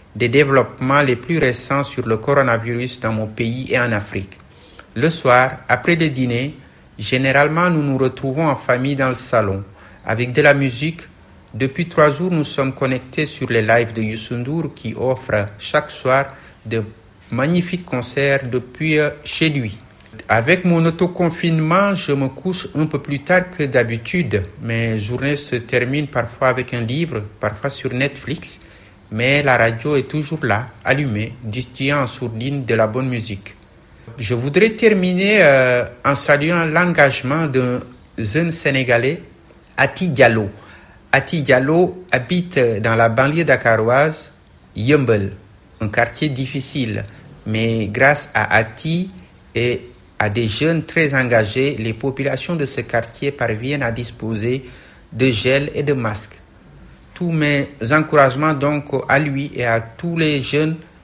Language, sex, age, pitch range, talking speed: French, male, 60-79, 115-150 Hz, 145 wpm